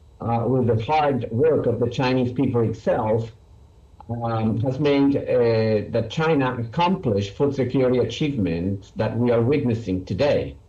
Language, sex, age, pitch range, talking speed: English, male, 50-69, 115-160 Hz, 140 wpm